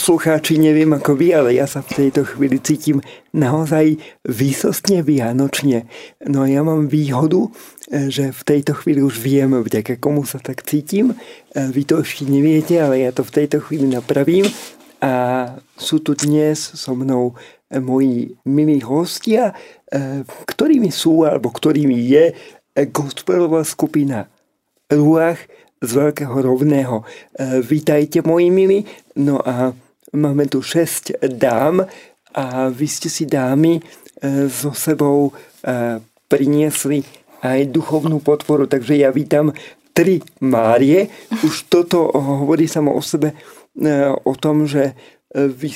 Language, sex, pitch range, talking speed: Slovak, male, 135-160 Hz, 125 wpm